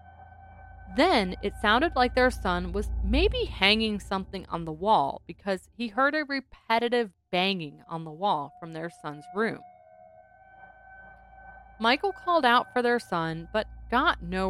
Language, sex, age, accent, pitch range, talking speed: English, female, 30-49, American, 165-250 Hz, 145 wpm